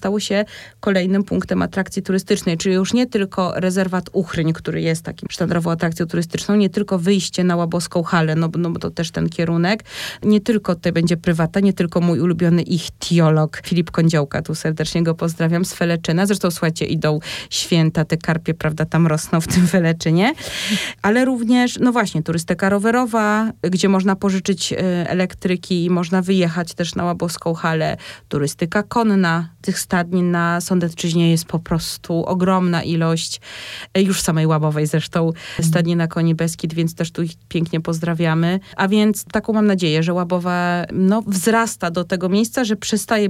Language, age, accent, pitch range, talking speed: Polish, 20-39, native, 170-195 Hz, 165 wpm